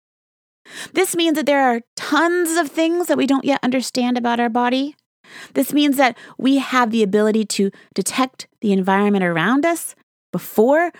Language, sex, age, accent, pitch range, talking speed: English, female, 30-49, American, 185-255 Hz, 165 wpm